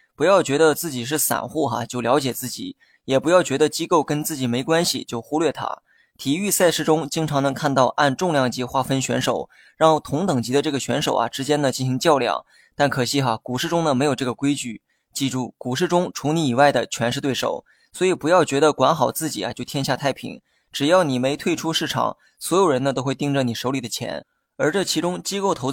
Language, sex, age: Chinese, male, 20-39